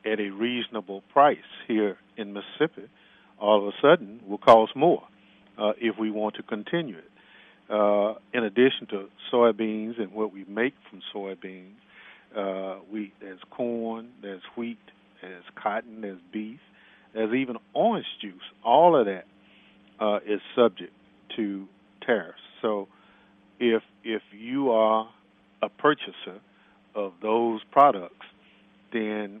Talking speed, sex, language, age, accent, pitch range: 130 wpm, male, English, 50-69, American, 100-115 Hz